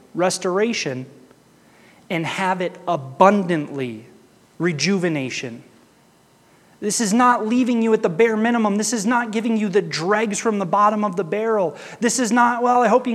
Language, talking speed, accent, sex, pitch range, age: English, 160 wpm, American, male, 160-225 Hz, 30-49